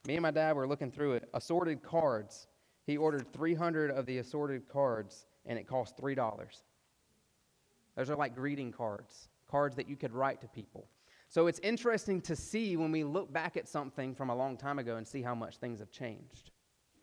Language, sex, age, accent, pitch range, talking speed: English, male, 30-49, American, 125-160 Hz, 195 wpm